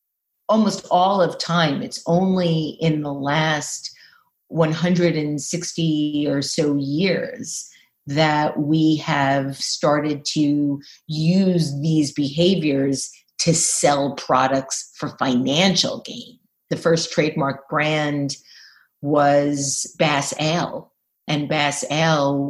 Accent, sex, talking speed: American, female, 100 wpm